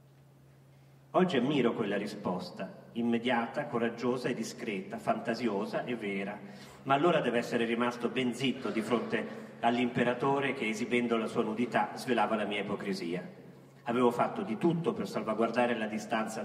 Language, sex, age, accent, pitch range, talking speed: Italian, male, 40-59, native, 120-180 Hz, 140 wpm